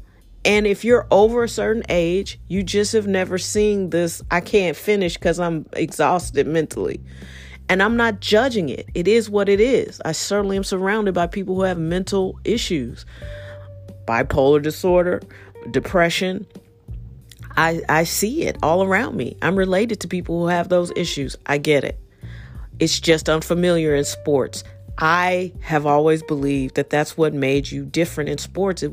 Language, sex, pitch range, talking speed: English, female, 135-195 Hz, 165 wpm